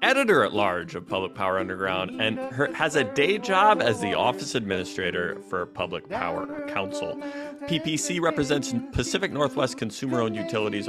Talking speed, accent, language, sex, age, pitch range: 130 wpm, American, English, male, 30-49, 100-155 Hz